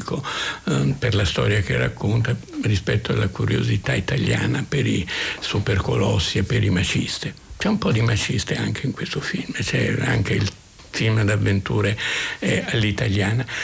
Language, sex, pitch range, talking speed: Italian, male, 105-135 Hz, 135 wpm